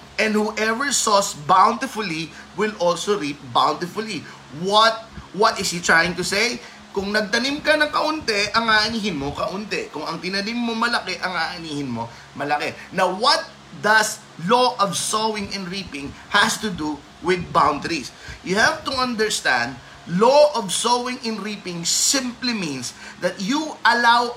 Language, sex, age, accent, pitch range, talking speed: Filipino, male, 30-49, native, 180-235 Hz, 150 wpm